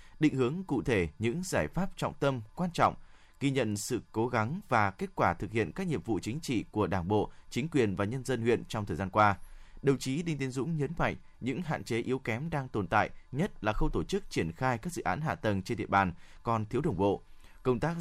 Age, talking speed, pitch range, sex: 20-39, 250 wpm, 105-150 Hz, male